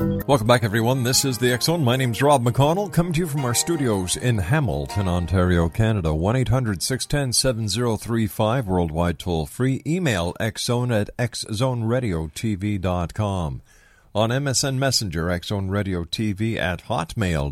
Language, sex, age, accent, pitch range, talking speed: English, male, 50-69, American, 90-130 Hz, 140 wpm